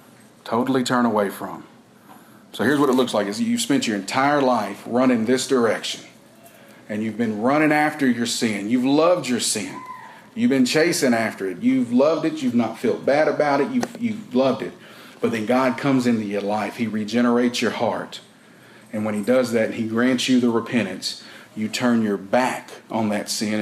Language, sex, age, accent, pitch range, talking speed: English, male, 40-59, American, 105-150 Hz, 190 wpm